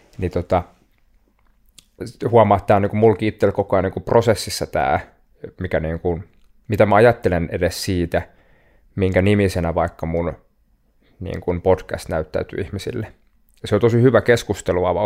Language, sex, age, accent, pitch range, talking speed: Finnish, male, 20-39, native, 90-110 Hz, 130 wpm